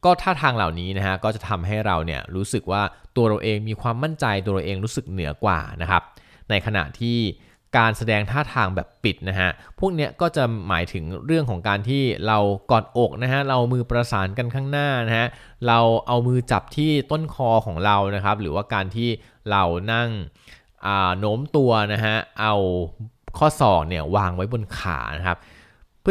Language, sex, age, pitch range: Thai, male, 20-39, 95-125 Hz